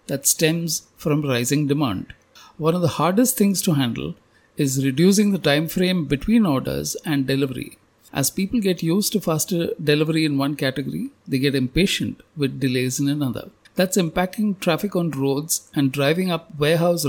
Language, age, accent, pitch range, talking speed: English, 50-69, Indian, 135-170 Hz, 165 wpm